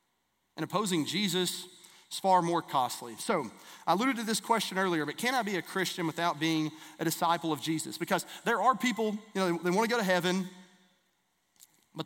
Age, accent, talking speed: 30-49, American, 195 wpm